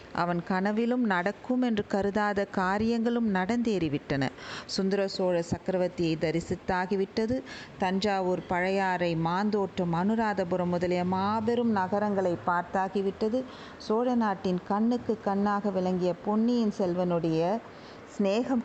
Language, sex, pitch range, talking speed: Tamil, female, 175-215 Hz, 85 wpm